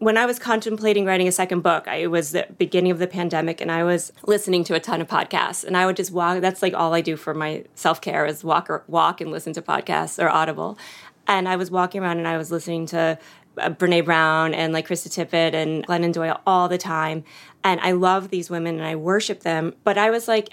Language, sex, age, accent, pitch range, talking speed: English, female, 30-49, American, 165-205 Hz, 245 wpm